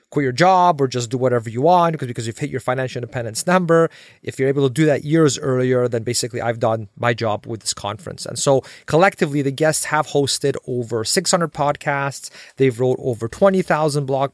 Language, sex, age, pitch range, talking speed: English, male, 30-49, 120-150 Hz, 200 wpm